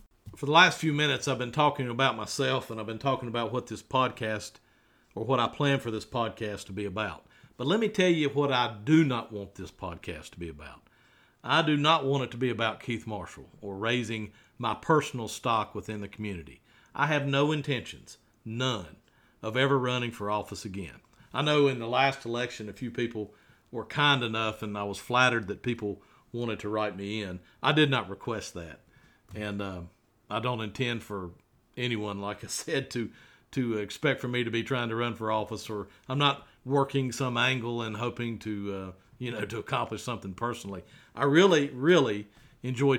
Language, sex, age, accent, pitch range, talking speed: English, male, 50-69, American, 105-135 Hz, 200 wpm